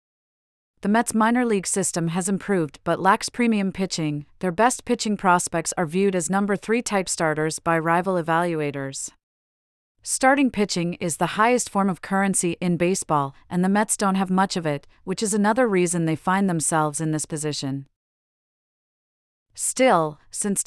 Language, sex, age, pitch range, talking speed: English, female, 40-59, 160-205 Hz, 160 wpm